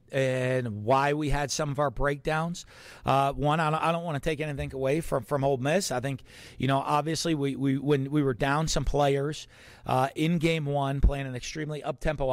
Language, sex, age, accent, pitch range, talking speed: English, male, 40-59, American, 130-155 Hz, 215 wpm